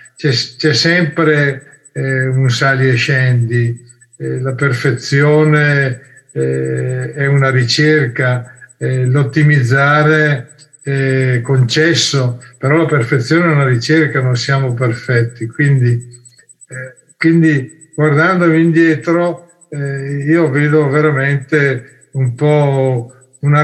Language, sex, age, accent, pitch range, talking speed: Italian, male, 50-69, native, 130-160 Hz, 100 wpm